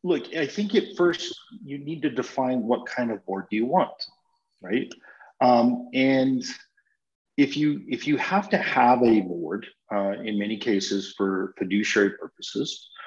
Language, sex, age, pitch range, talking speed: English, male, 40-59, 105-145 Hz, 160 wpm